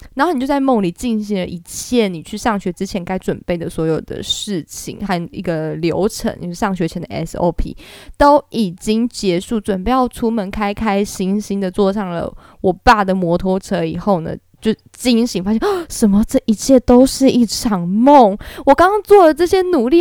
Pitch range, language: 175-240 Hz, Chinese